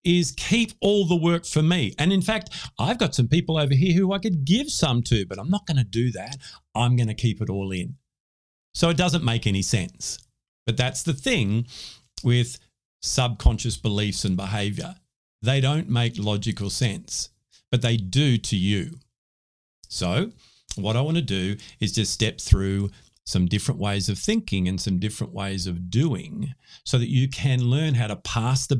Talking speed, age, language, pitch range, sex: 190 wpm, 50-69, English, 100-140 Hz, male